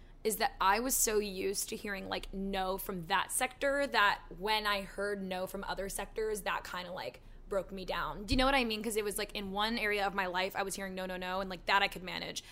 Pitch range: 185-215 Hz